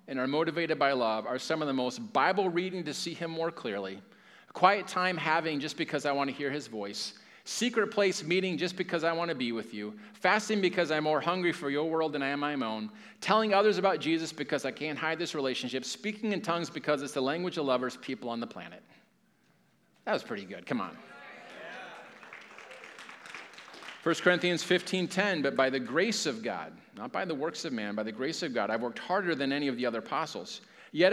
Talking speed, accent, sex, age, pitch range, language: 210 wpm, American, male, 40-59, 135-185 Hz, English